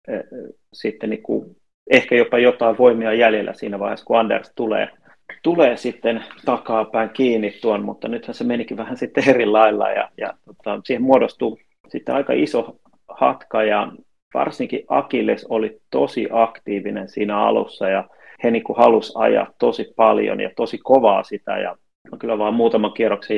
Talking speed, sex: 155 wpm, male